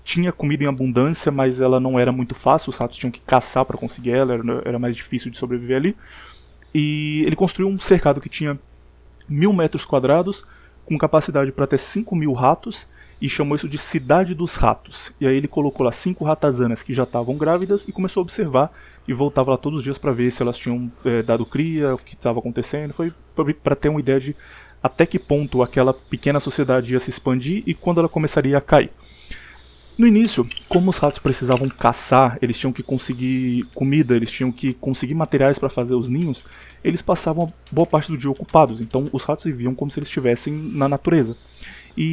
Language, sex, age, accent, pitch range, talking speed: Portuguese, male, 20-39, Brazilian, 125-155 Hz, 200 wpm